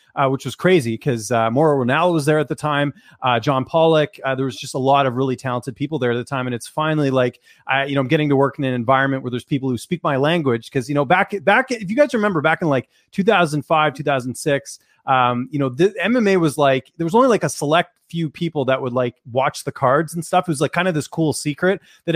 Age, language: 30-49, English